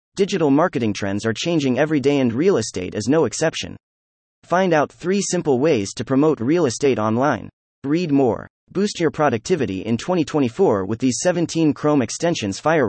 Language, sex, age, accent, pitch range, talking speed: English, male, 30-49, American, 110-155 Hz, 170 wpm